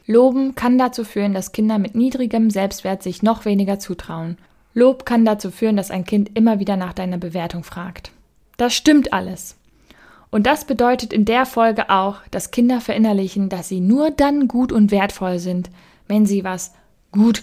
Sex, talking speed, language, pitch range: female, 175 wpm, German, 190-230 Hz